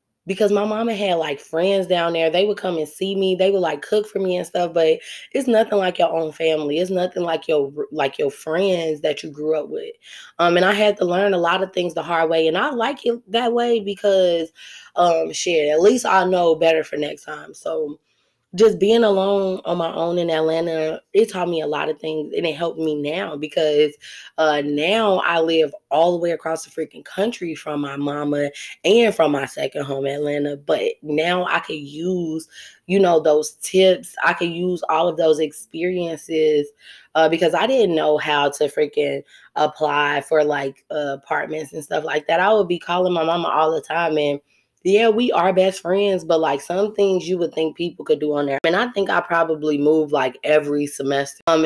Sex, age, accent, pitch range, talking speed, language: female, 20-39, American, 155-190 Hz, 215 wpm, English